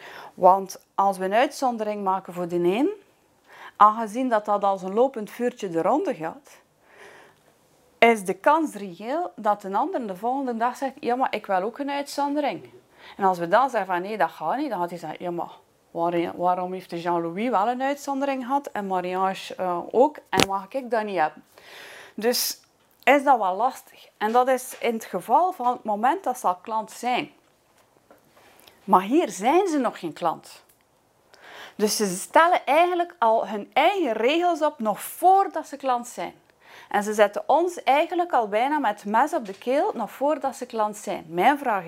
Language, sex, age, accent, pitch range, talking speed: Dutch, female, 30-49, Dutch, 190-280 Hz, 185 wpm